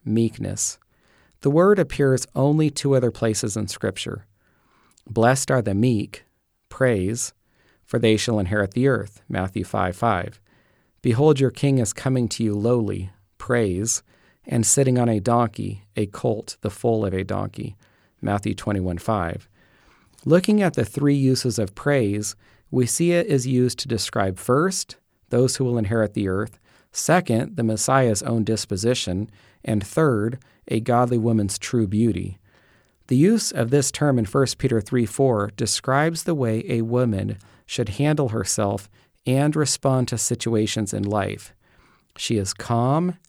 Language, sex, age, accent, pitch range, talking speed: English, male, 40-59, American, 105-130 Hz, 150 wpm